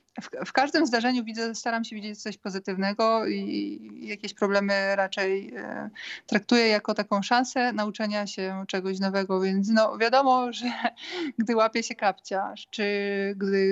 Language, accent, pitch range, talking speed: Polish, native, 200-230 Hz, 125 wpm